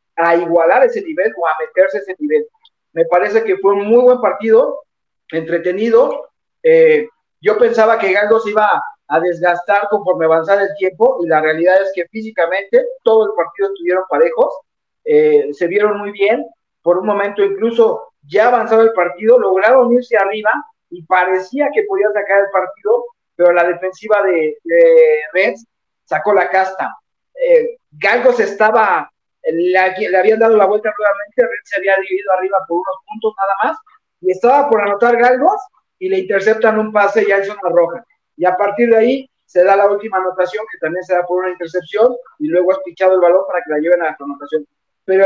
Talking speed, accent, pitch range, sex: 185 wpm, Mexican, 185-260 Hz, male